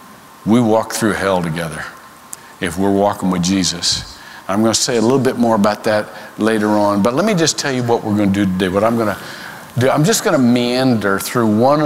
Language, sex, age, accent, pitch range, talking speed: English, male, 50-69, American, 105-130 Hz, 210 wpm